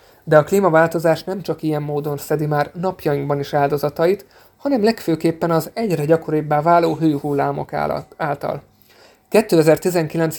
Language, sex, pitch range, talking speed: Hungarian, male, 150-175 Hz, 120 wpm